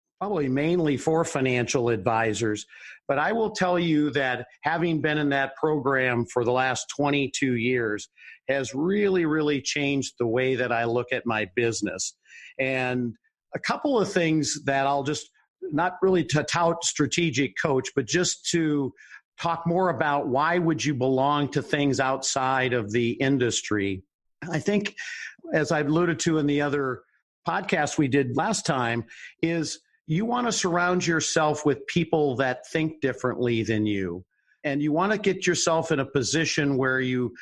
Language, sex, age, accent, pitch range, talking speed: English, male, 50-69, American, 125-160 Hz, 160 wpm